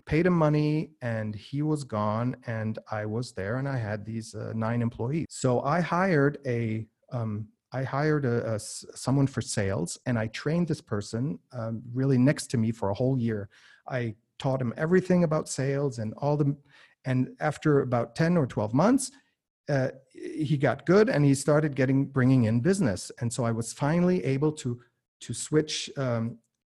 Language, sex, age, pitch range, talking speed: English, male, 40-59, 120-150 Hz, 180 wpm